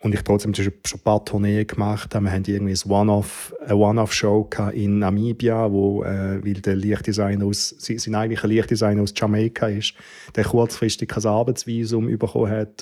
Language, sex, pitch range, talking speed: German, male, 105-115 Hz, 170 wpm